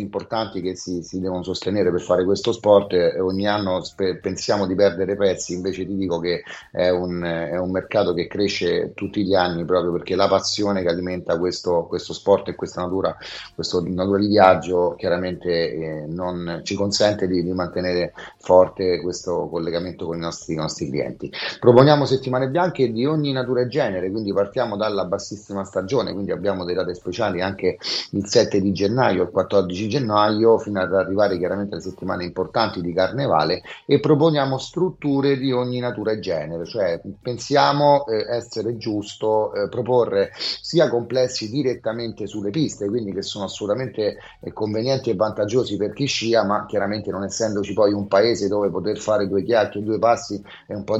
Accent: native